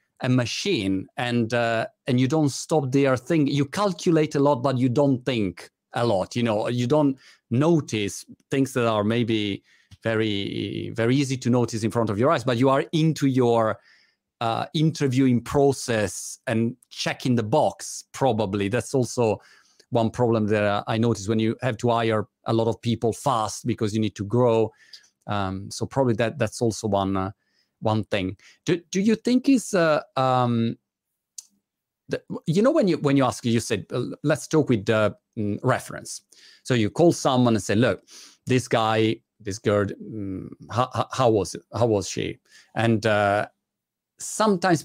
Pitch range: 110-140 Hz